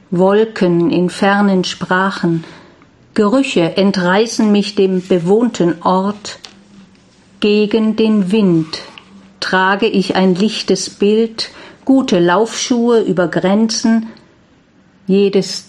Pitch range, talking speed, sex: 185-220 Hz, 90 wpm, female